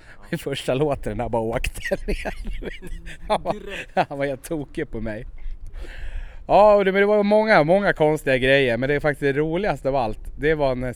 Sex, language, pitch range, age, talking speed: male, English, 110-155 Hz, 30-49, 190 wpm